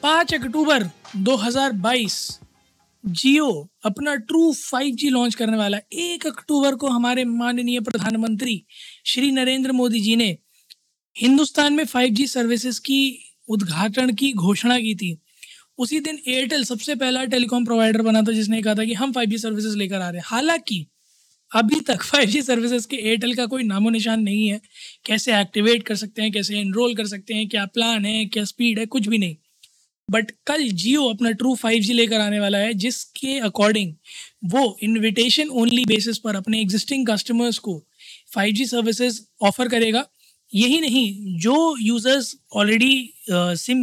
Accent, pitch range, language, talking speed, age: native, 215-260 Hz, Hindi, 155 wpm, 20-39